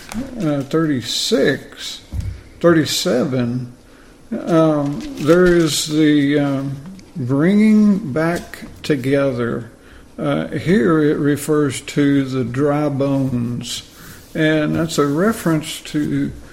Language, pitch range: English, 135-165 Hz